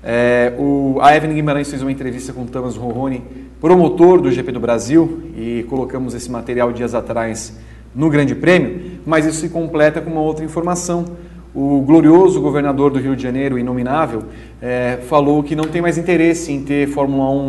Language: Portuguese